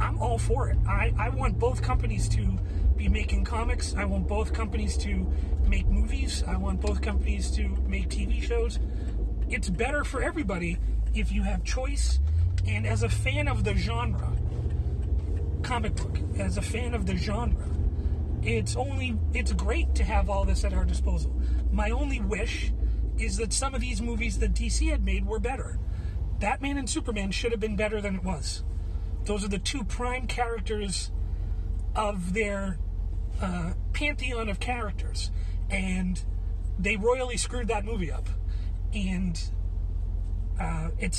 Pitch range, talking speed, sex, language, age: 80-95 Hz, 155 wpm, male, English, 30-49